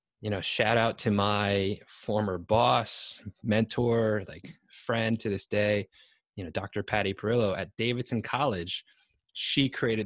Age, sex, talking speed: 20-39, male, 145 wpm